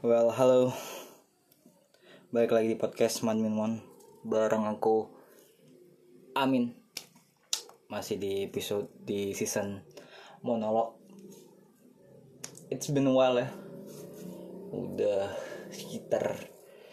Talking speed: 90 wpm